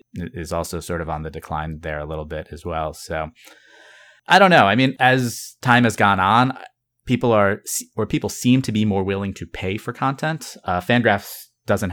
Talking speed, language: 200 wpm, English